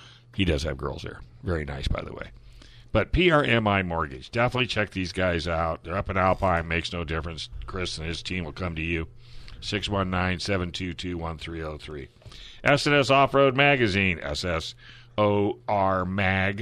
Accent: American